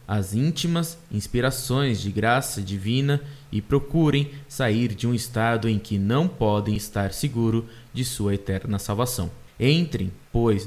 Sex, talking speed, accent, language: male, 135 wpm, Brazilian, Portuguese